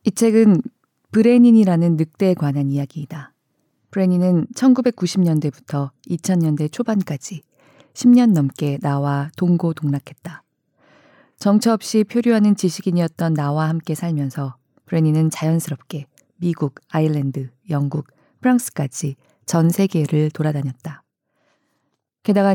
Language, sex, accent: Korean, female, native